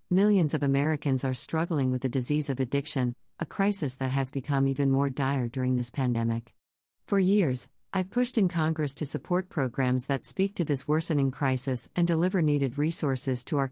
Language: English